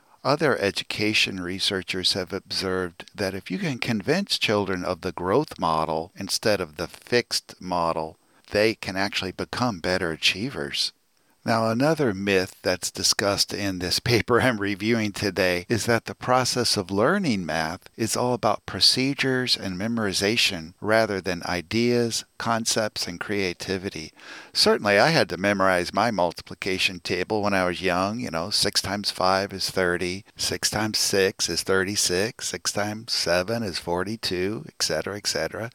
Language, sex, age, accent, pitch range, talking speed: English, male, 50-69, American, 90-110 Hz, 145 wpm